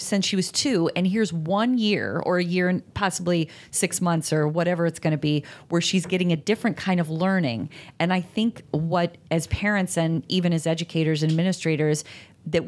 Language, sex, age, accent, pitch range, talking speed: English, female, 30-49, American, 155-185 Hz, 200 wpm